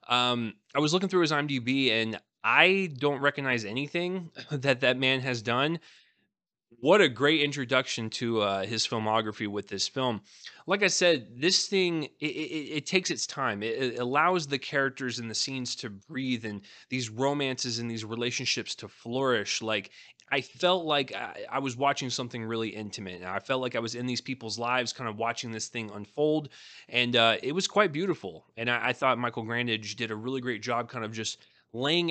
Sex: male